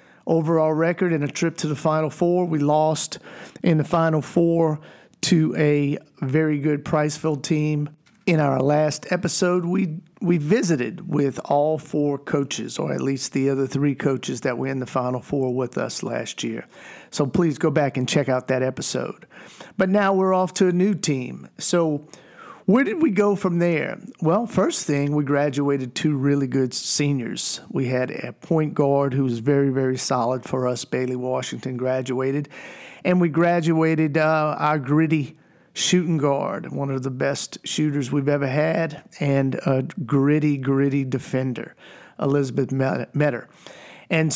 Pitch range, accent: 140-170 Hz, American